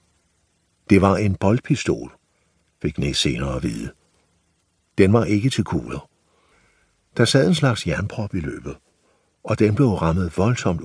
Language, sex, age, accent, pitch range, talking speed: Danish, male, 60-79, native, 85-120 Hz, 145 wpm